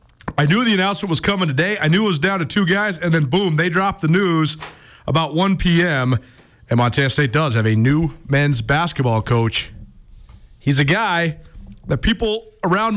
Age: 40-59